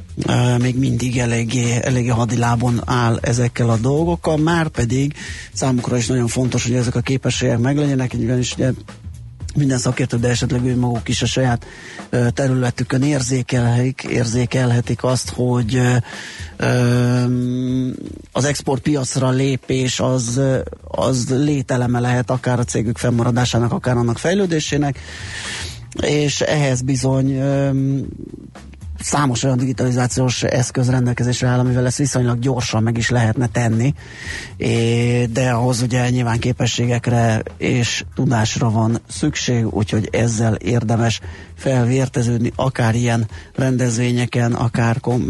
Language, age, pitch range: Hungarian, 30-49, 115-130 Hz